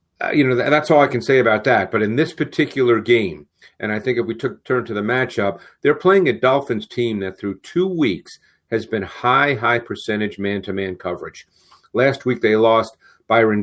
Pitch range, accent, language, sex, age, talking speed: 105-130 Hz, American, English, male, 40-59, 195 wpm